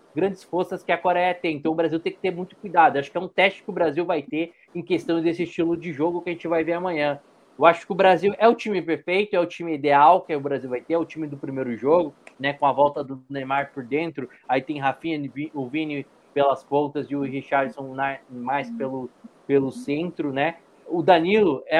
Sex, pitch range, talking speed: male, 140-175 Hz, 235 wpm